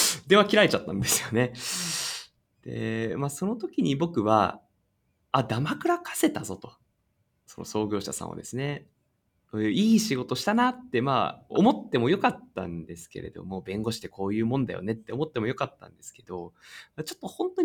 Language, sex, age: Japanese, male, 20-39